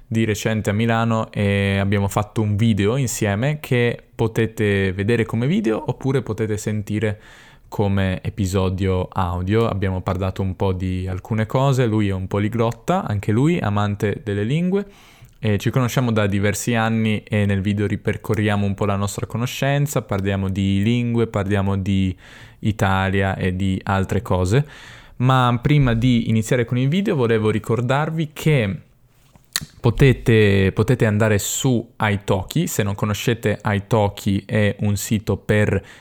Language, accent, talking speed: Italian, native, 140 wpm